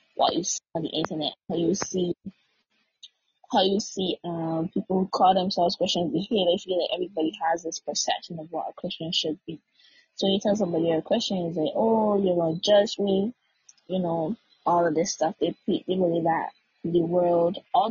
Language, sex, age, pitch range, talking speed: English, female, 20-39, 160-195 Hz, 200 wpm